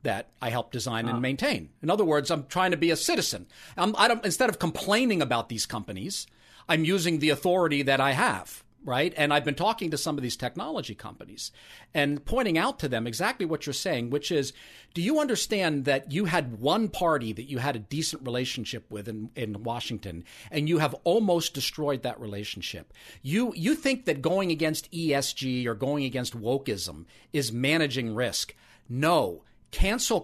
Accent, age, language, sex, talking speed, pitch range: American, 50-69, English, male, 185 wpm, 125-165 Hz